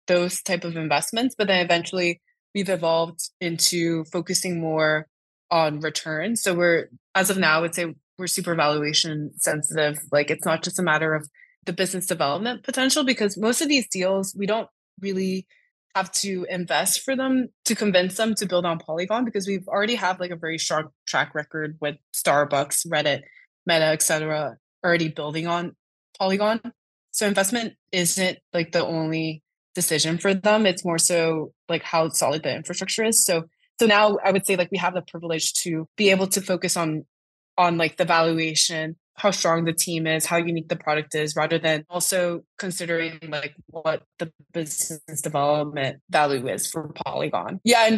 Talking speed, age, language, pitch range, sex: 175 wpm, 20-39, English, 160-195 Hz, female